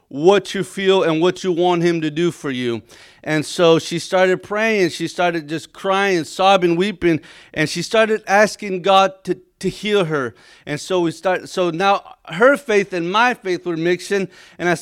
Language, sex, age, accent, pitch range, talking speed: English, male, 30-49, American, 175-215 Hz, 190 wpm